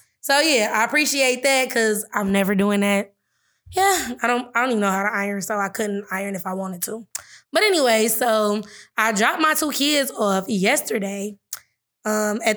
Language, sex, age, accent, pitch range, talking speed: English, female, 20-39, American, 210-255 Hz, 190 wpm